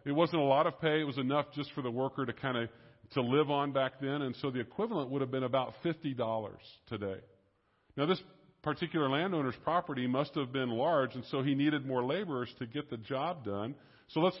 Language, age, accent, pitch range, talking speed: English, 50-69, American, 125-160 Hz, 220 wpm